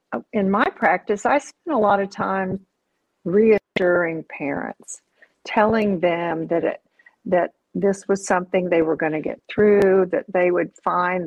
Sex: female